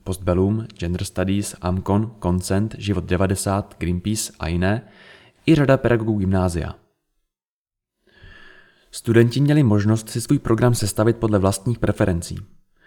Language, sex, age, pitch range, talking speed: Czech, male, 20-39, 100-130 Hz, 105 wpm